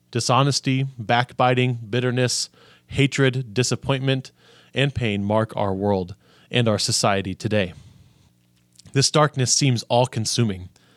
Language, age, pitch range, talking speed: English, 30-49, 105-135 Hz, 100 wpm